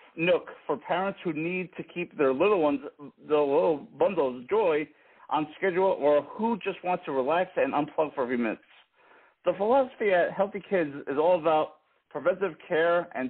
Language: English